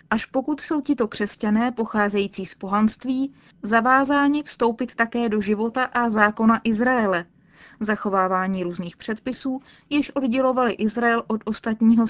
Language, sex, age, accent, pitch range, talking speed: Czech, female, 20-39, native, 205-255 Hz, 120 wpm